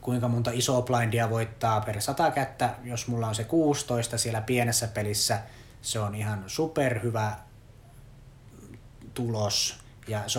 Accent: native